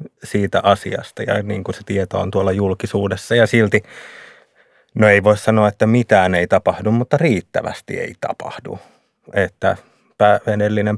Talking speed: 125 wpm